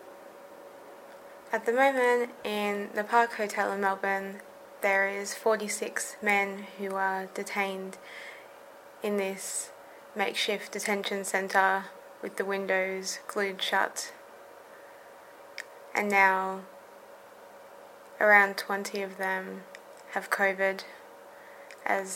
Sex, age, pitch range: female, 20-39, 190-205 Hz